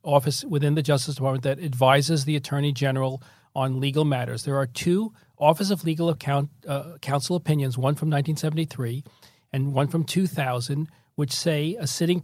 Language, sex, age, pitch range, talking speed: English, male, 40-59, 135-165 Hz, 165 wpm